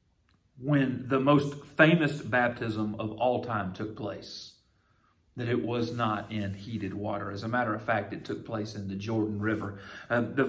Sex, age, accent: male, 40-59, American